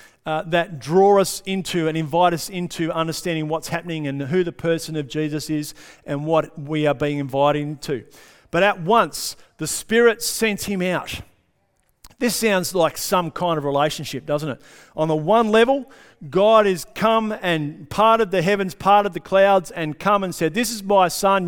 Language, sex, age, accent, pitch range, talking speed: English, male, 50-69, Australian, 155-200 Hz, 185 wpm